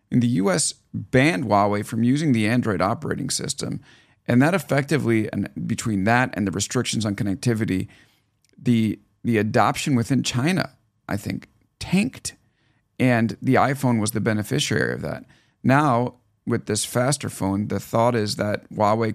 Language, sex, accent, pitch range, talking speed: English, male, American, 110-135 Hz, 150 wpm